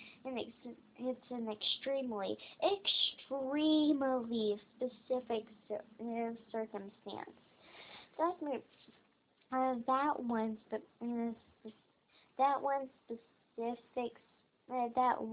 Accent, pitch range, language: American, 240-285 Hz, English